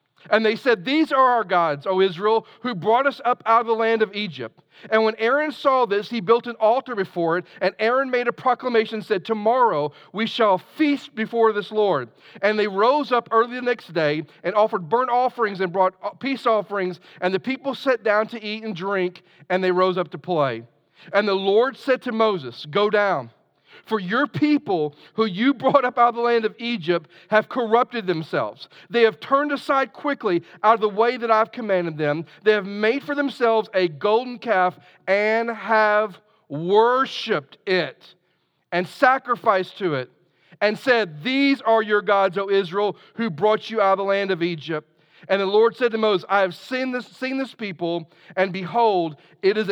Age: 40-59